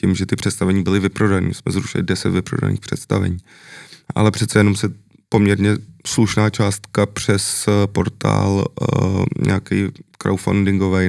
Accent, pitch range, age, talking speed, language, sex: native, 95-100 Hz, 20-39, 120 wpm, Czech, male